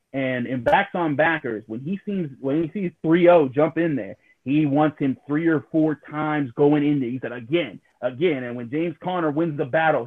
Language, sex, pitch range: English, male, 130-165 Hz